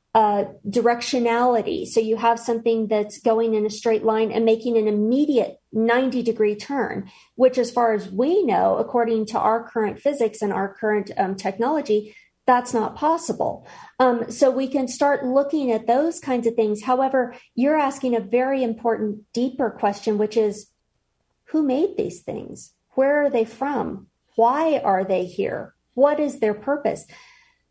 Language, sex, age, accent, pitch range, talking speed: English, female, 40-59, American, 215-260 Hz, 160 wpm